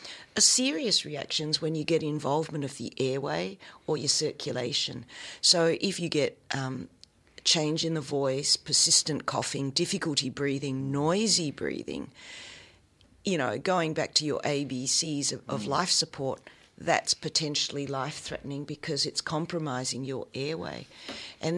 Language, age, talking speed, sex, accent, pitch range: English, 50-69, 135 wpm, female, Australian, 135-160 Hz